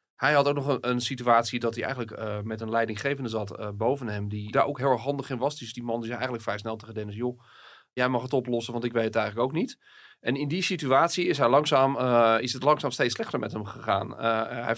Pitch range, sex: 110-135 Hz, male